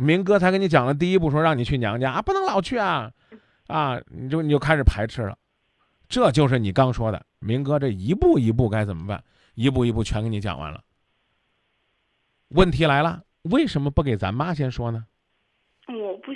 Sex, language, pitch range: male, Chinese, 105-160 Hz